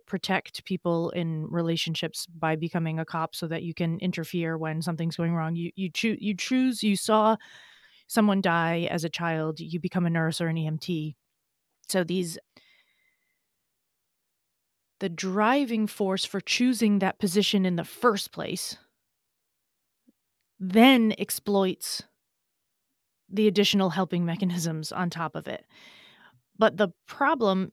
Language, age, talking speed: English, 30-49, 135 wpm